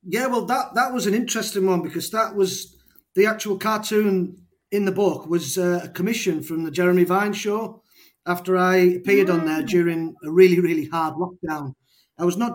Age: 30-49